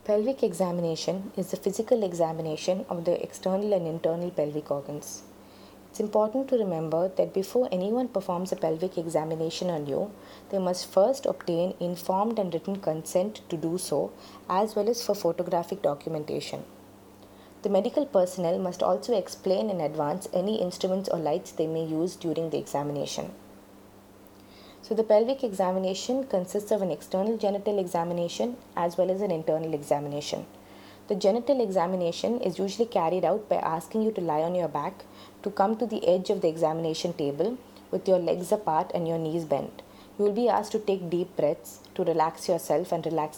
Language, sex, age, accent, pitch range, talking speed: English, female, 20-39, Indian, 155-195 Hz, 170 wpm